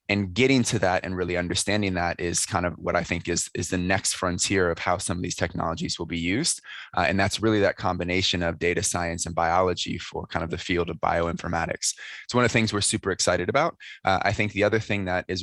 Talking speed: 245 wpm